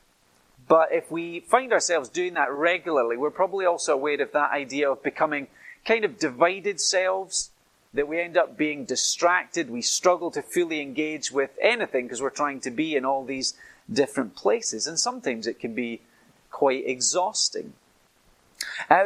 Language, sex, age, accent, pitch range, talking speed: English, male, 30-49, British, 140-185 Hz, 165 wpm